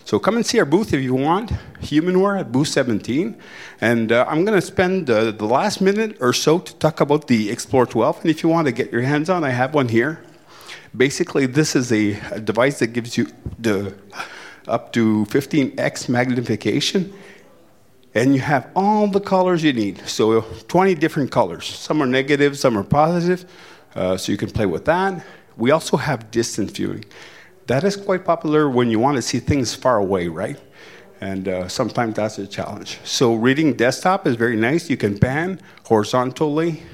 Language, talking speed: English, 190 wpm